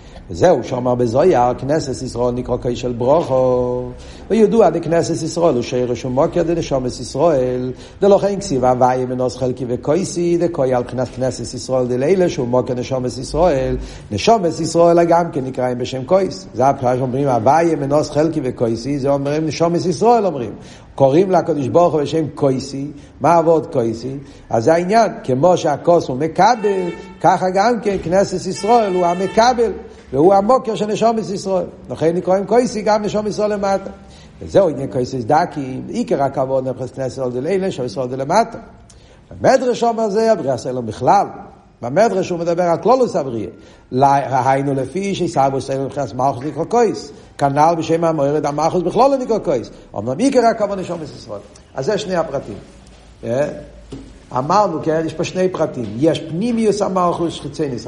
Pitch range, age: 130-185 Hz, 60-79